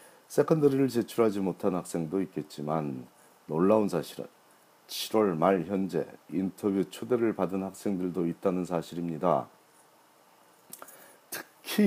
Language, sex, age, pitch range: Korean, male, 40-59, 80-105 Hz